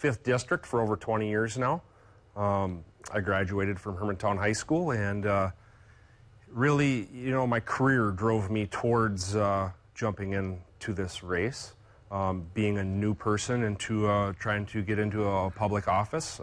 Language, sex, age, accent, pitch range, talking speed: English, male, 30-49, American, 90-110 Hz, 155 wpm